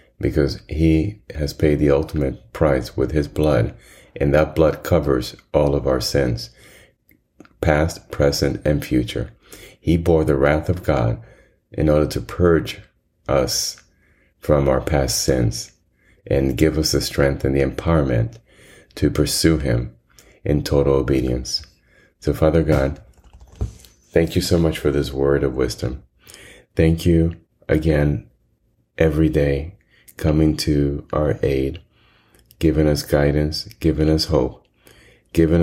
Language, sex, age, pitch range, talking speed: English, male, 30-49, 70-80 Hz, 135 wpm